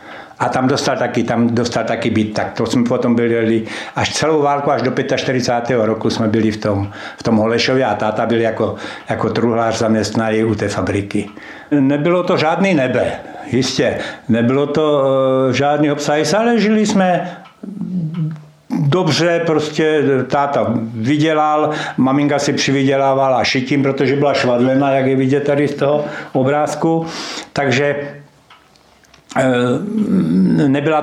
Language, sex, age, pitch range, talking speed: Slovak, male, 60-79, 115-145 Hz, 135 wpm